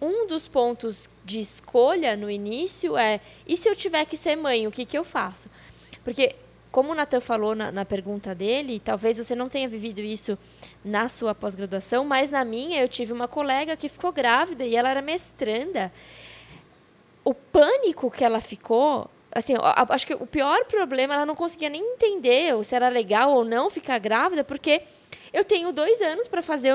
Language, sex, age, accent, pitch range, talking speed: Portuguese, female, 20-39, Brazilian, 230-330 Hz, 180 wpm